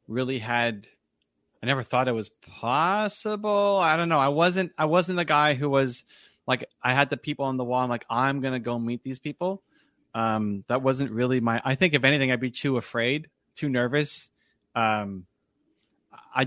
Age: 30-49